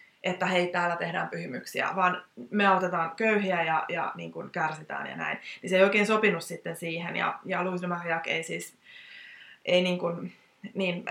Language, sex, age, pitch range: Finnish, female, 20-39, 180-210 Hz